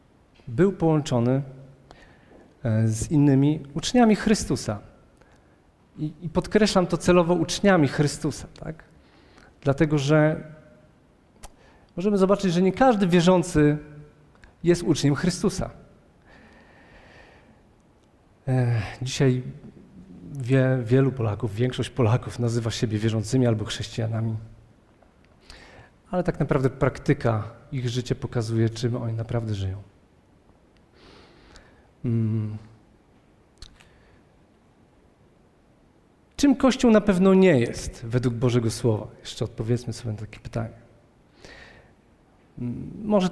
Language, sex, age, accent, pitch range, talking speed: Polish, male, 40-59, native, 115-160 Hz, 85 wpm